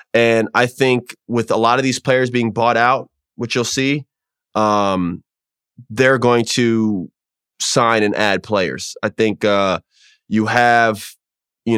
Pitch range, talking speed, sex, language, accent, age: 100-115 Hz, 150 wpm, male, English, American, 20-39